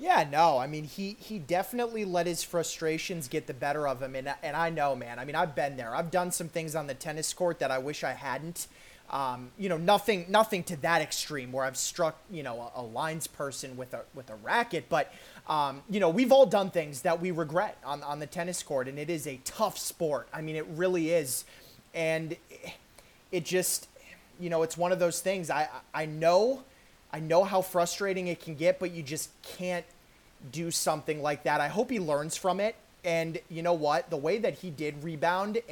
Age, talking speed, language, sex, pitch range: 30-49, 220 wpm, English, male, 150-180 Hz